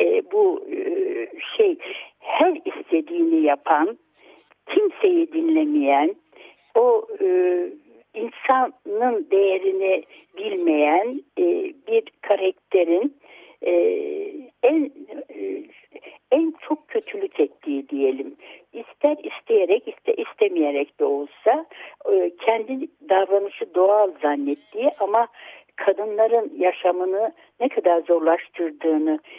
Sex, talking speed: female, 85 wpm